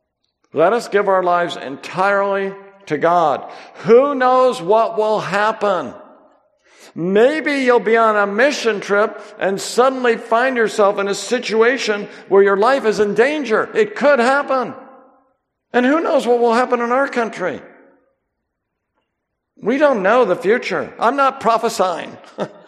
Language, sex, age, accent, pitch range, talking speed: English, male, 60-79, American, 185-250 Hz, 140 wpm